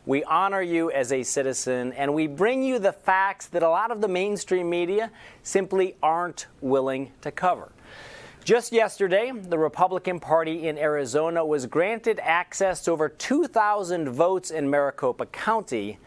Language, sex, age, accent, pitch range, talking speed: English, male, 40-59, American, 140-190 Hz, 155 wpm